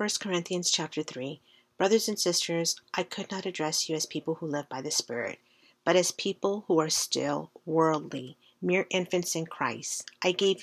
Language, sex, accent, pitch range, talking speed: English, female, American, 150-175 Hz, 180 wpm